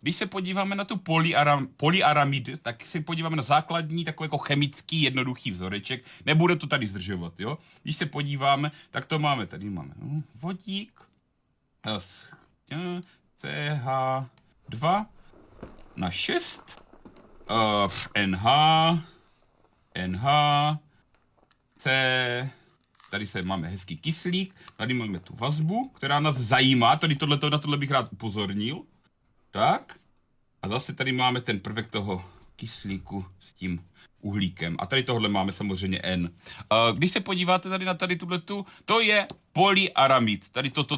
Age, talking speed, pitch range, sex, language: 40-59, 125 wpm, 115-170 Hz, male, Czech